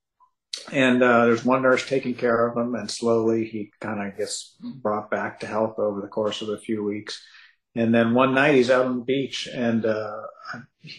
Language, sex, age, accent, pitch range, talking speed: English, male, 50-69, American, 110-125 Hz, 200 wpm